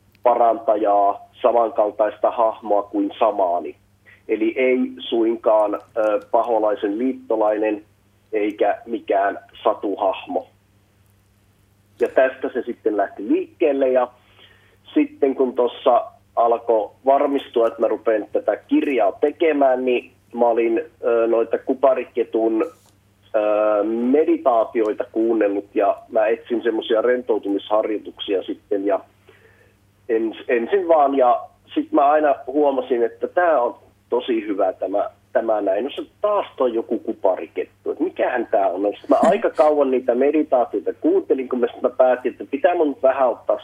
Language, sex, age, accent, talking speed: Finnish, male, 40-59, native, 120 wpm